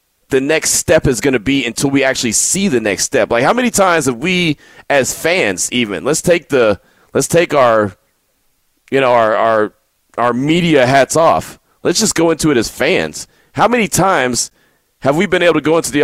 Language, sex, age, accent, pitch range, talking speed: English, male, 30-49, American, 125-165 Hz, 205 wpm